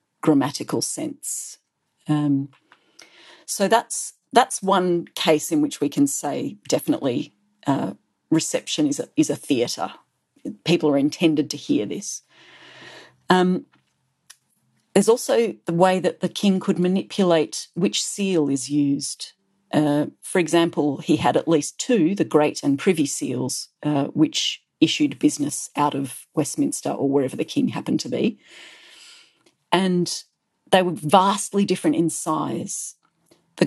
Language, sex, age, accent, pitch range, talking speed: English, female, 40-59, Australian, 150-205 Hz, 135 wpm